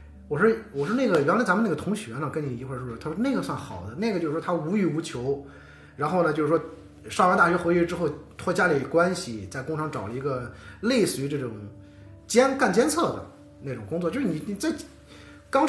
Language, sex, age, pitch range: Chinese, male, 20-39, 105-170 Hz